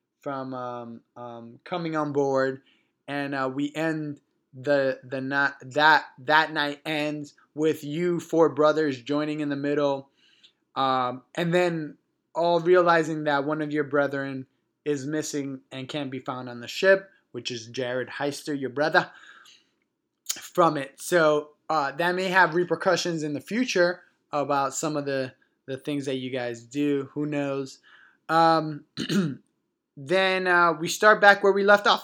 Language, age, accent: English, 20-39, American